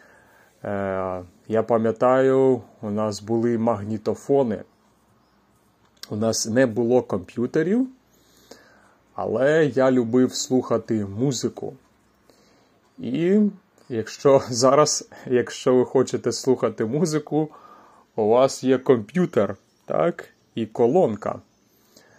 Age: 30-49